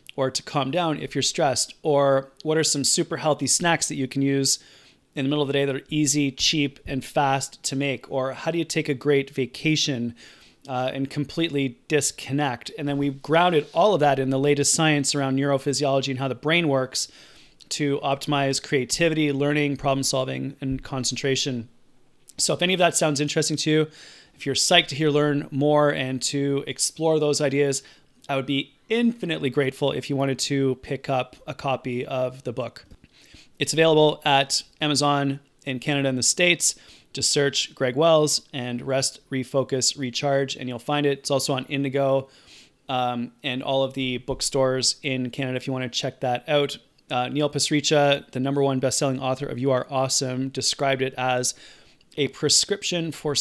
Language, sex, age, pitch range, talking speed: English, male, 30-49, 130-145 Hz, 185 wpm